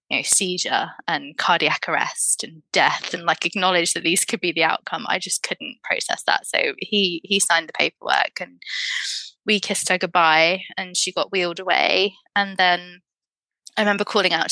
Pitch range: 180-210 Hz